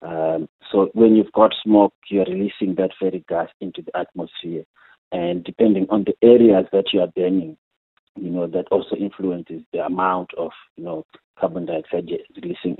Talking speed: 170 wpm